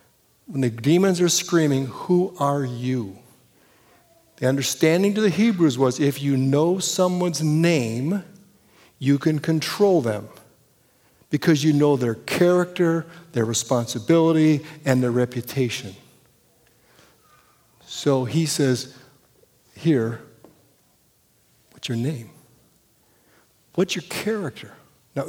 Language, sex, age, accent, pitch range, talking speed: English, male, 60-79, American, 125-165 Hz, 105 wpm